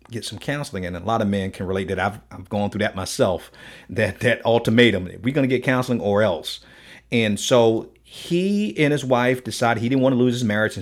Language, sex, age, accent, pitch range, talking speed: English, male, 40-59, American, 100-125 Hz, 225 wpm